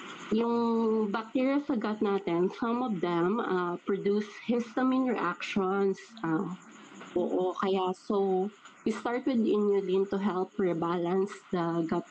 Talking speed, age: 125 wpm, 20-39